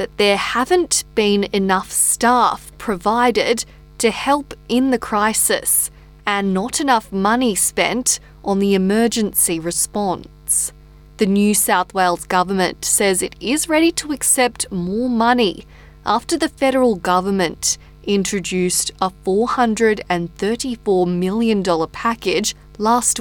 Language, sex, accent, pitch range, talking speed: English, female, Australian, 180-230 Hz, 115 wpm